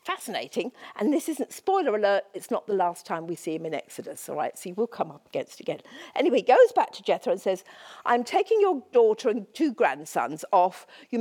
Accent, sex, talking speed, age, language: British, female, 220 wpm, 50-69, English